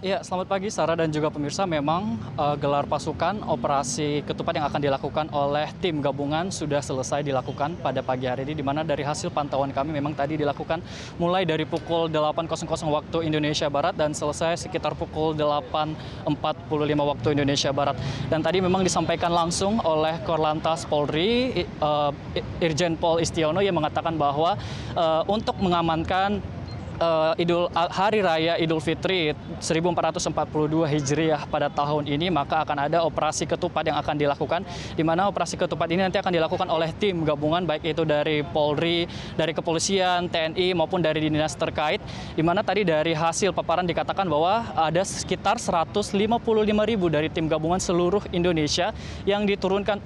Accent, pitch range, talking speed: native, 150-175 Hz, 150 wpm